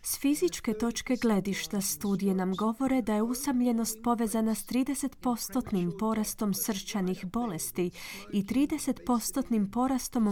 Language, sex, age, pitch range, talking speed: Croatian, female, 30-49, 185-250 Hz, 110 wpm